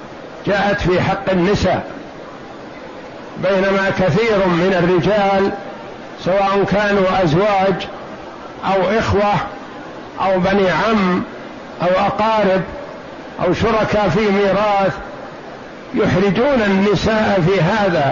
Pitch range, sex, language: 190-215 Hz, male, Arabic